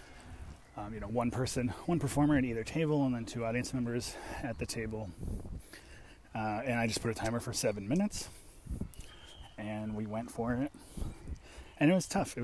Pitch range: 105-125 Hz